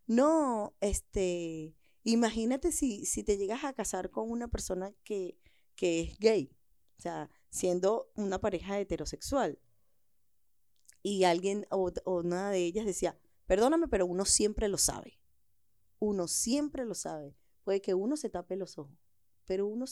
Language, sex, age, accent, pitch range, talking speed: Spanish, female, 10-29, American, 190-250 Hz, 150 wpm